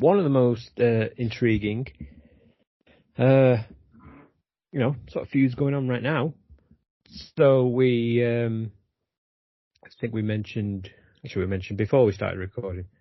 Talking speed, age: 140 wpm, 30-49